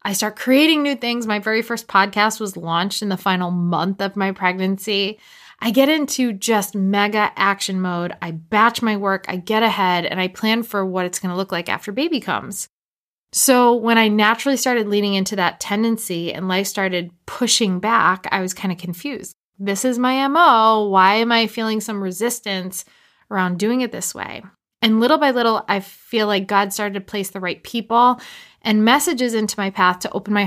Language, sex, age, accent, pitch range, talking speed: English, female, 20-39, American, 180-230 Hz, 200 wpm